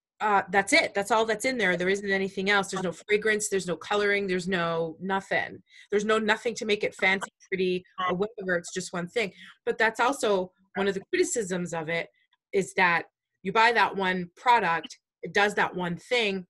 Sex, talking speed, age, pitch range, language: female, 205 wpm, 30-49, 180-215 Hz, English